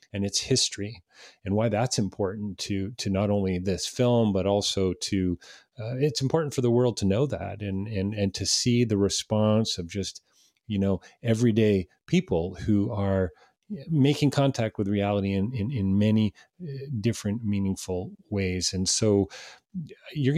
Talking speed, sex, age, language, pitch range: 160 wpm, male, 40-59, English, 95-115 Hz